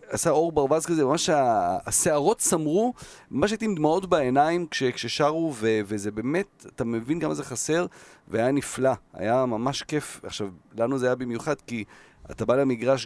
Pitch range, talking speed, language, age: 115-155 Hz, 165 wpm, Hebrew, 40-59